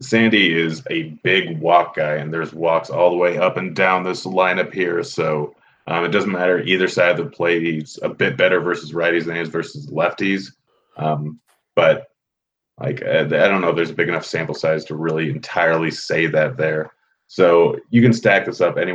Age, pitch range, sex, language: 30-49, 80-90 Hz, male, English